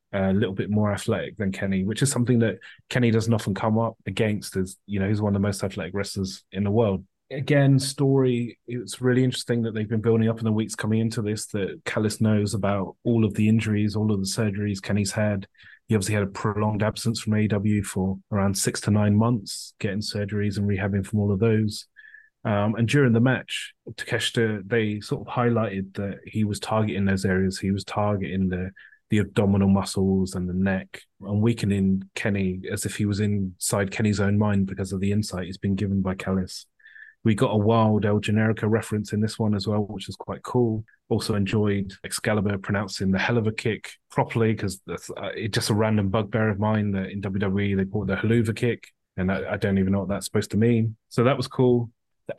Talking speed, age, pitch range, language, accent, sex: 215 wpm, 30-49, 100-115 Hz, English, British, male